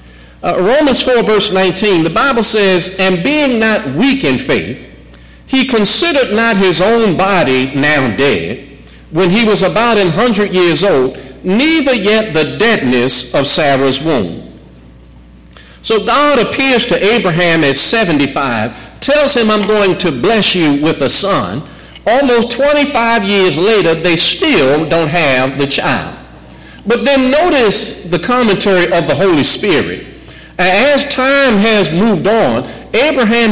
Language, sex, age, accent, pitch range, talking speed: English, male, 50-69, American, 165-230 Hz, 140 wpm